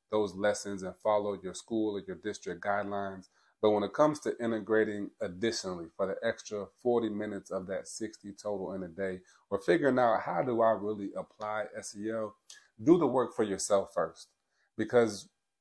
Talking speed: 175 wpm